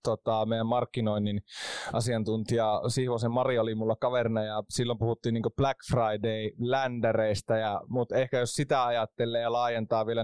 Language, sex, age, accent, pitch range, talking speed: Finnish, male, 20-39, native, 110-125 Hz, 140 wpm